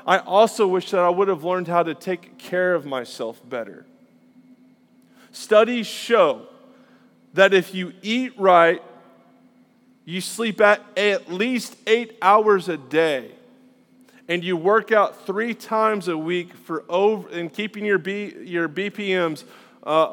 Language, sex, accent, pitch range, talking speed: English, male, American, 180-230 Hz, 145 wpm